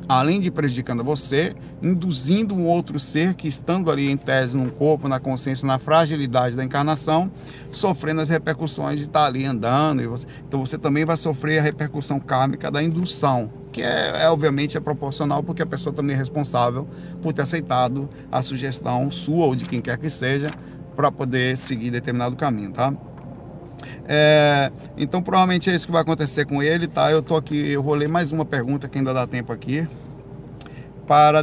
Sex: male